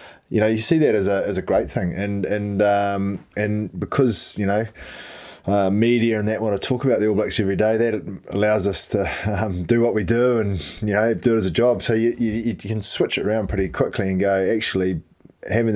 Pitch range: 90-110 Hz